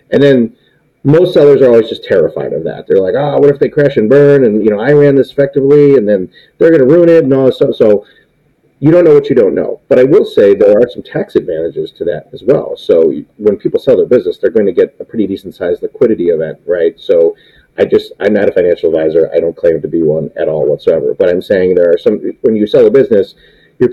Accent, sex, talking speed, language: American, male, 260 wpm, English